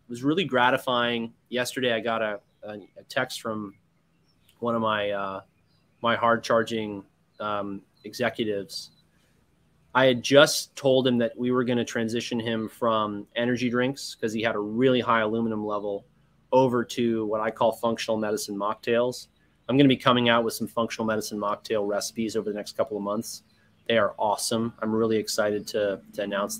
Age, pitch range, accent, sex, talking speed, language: 20-39, 110-130 Hz, American, male, 175 wpm, English